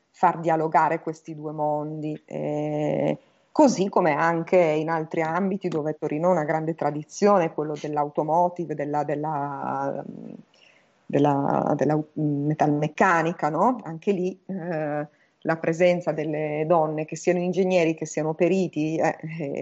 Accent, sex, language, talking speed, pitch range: native, female, Italian, 120 wpm, 155-200 Hz